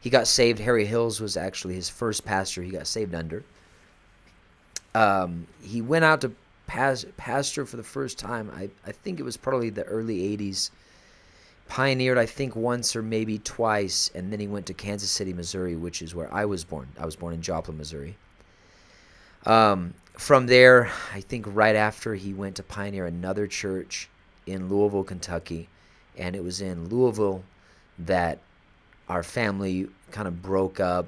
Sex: male